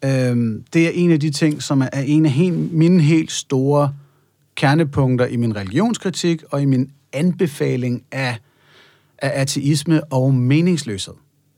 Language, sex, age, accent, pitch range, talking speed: Danish, male, 30-49, native, 130-155 Hz, 130 wpm